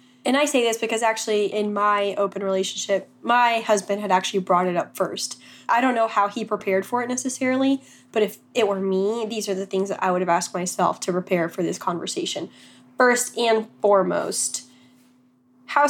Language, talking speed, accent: English, 195 wpm, American